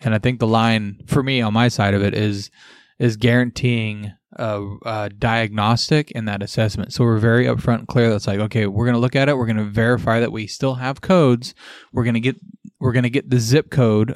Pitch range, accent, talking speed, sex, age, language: 105-125 Hz, American, 235 wpm, male, 20-39, English